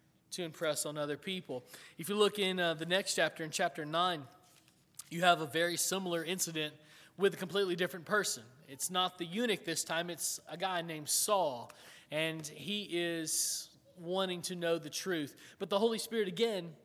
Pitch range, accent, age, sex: 155-185 Hz, American, 20-39, male